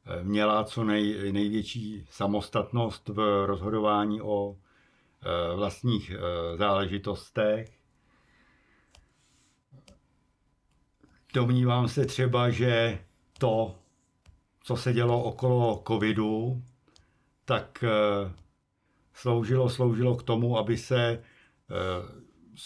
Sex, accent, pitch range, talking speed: male, native, 105-120 Hz, 80 wpm